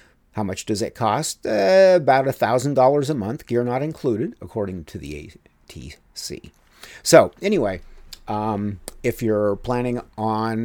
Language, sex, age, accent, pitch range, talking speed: English, male, 50-69, American, 100-130 Hz, 135 wpm